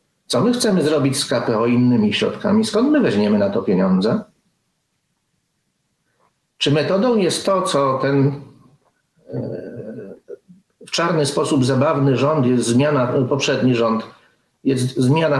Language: Polish